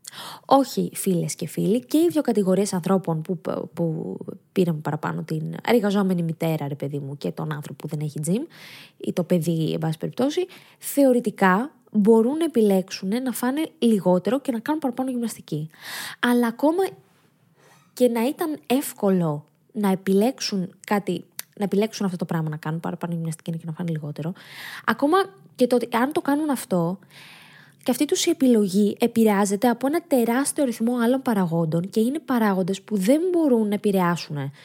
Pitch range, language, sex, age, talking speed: 170-255 Hz, Greek, female, 20-39, 160 wpm